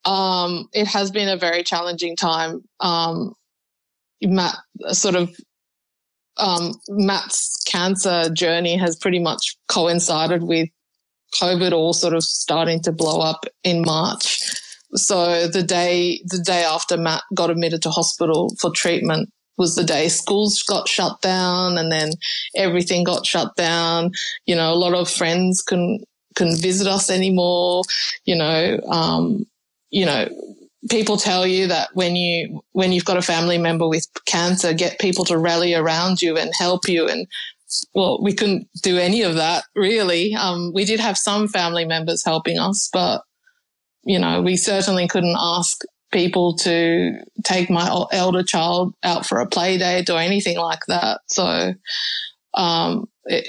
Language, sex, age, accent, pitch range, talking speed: English, female, 20-39, Australian, 170-195 Hz, 160 wpm